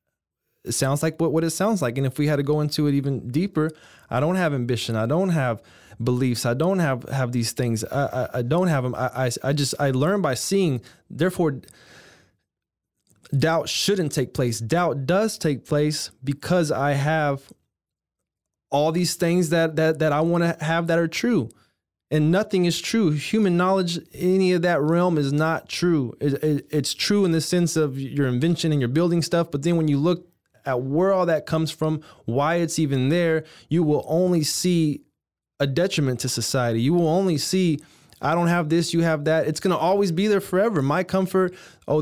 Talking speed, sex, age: 200 wpm, male, 20-39